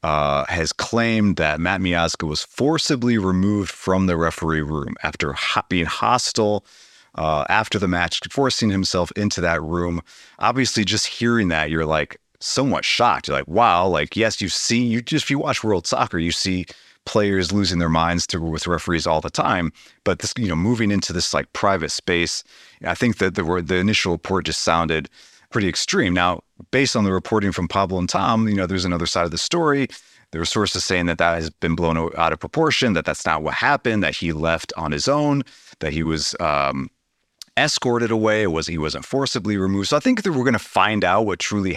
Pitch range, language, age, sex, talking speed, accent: 85-110 Hz, English, 30-49, male, 205 wpm, American